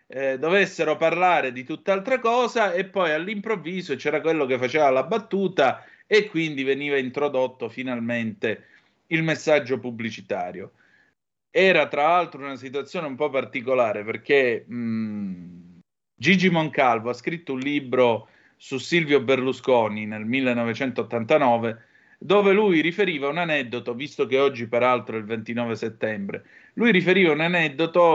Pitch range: 120-165 Hz